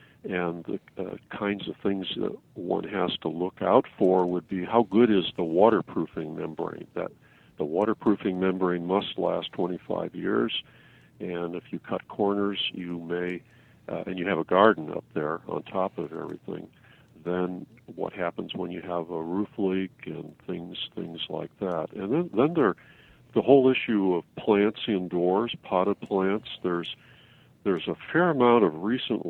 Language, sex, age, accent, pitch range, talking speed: English, male, 50-69, American, 85-100 Hz, 165 wpm